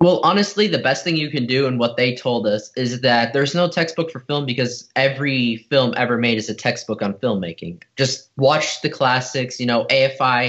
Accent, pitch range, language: American, 120-140 Hz, English